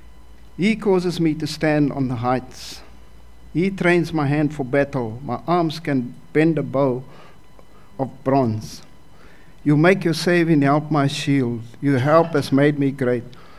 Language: English